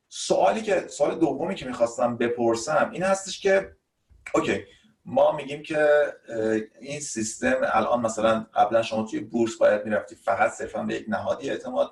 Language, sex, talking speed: Persian, male, 150 wpm